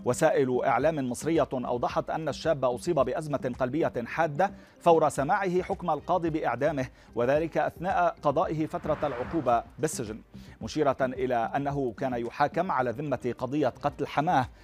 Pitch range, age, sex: 125-160 Hz, 40-59, male